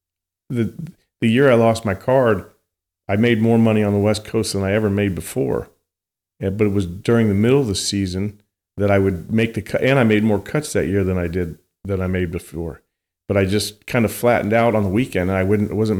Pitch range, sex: 95-110 Hz, male